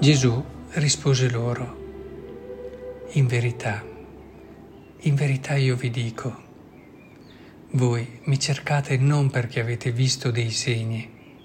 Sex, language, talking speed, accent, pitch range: male, Italian, 100 wpm, native, 120-145 Hz